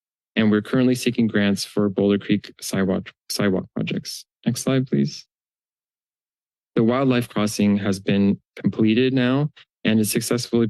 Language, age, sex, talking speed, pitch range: English, 20-39, male, 135 wpm, 100-120 Hz